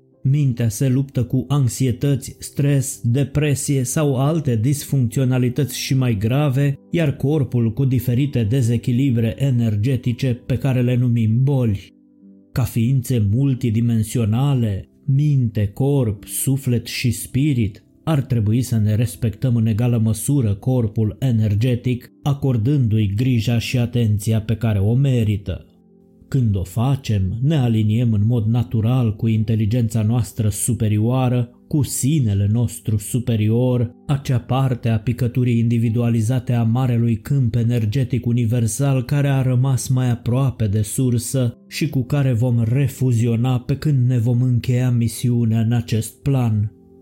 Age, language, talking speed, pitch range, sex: 20-39, Romanian, 125 wpm, 115-135 Hz, male